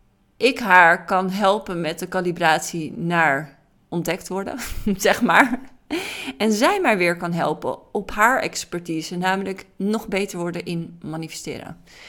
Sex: female